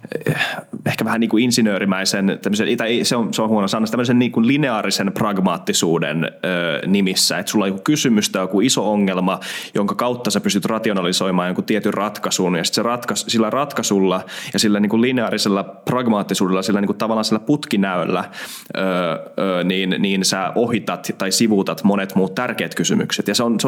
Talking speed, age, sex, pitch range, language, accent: 170 wpm, 20-39, male, 95-125 Hz, Finnish, native